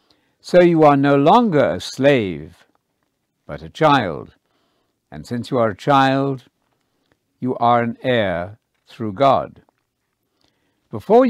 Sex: male